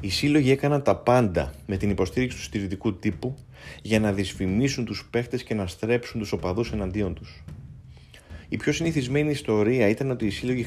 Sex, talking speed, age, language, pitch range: male, 175 wpm, 30-49, Greek, 95-120 Hz